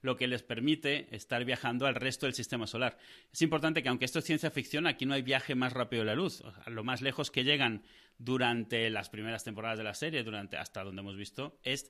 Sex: male